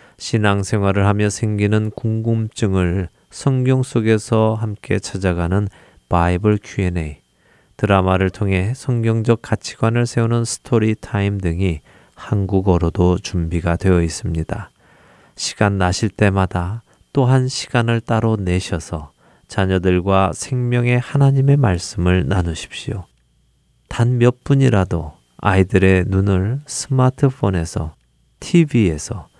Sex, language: male, Korean